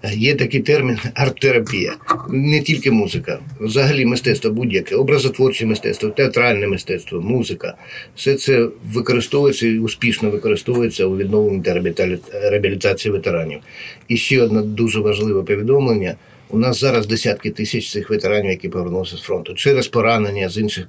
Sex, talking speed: male, 140 wpm